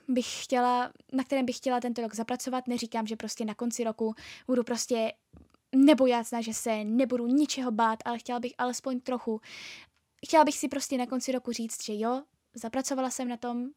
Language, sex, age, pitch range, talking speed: Czech, female, 10-29, 220-250 Hz, 185 wpm